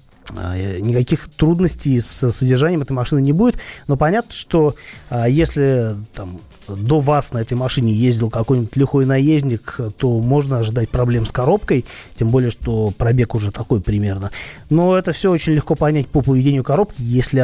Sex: male